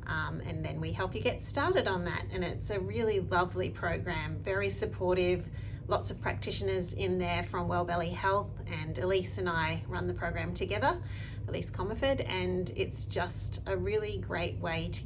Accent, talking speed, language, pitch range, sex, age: Australian, 175 wpm, English, 95-115 Hz, female, 30-49